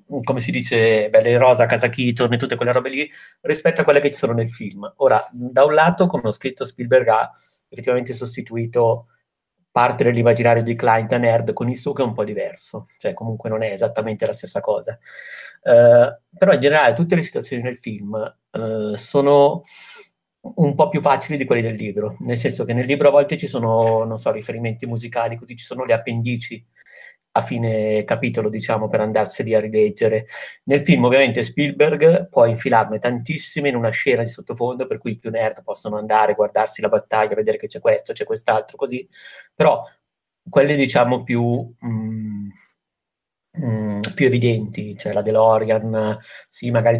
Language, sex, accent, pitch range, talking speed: Italian, male, native, 110-140 Hz, 180 wpm